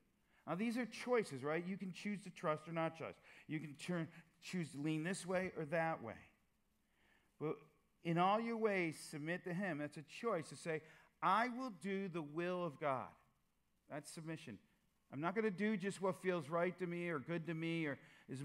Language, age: English, 50-69